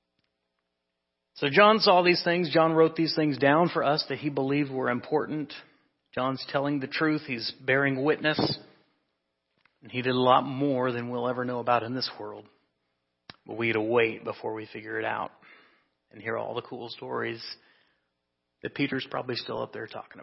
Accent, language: American, English